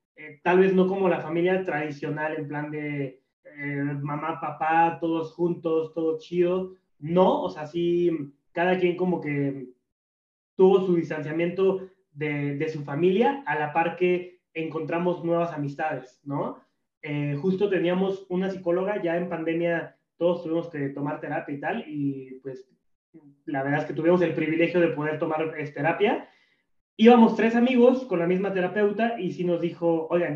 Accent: Mexican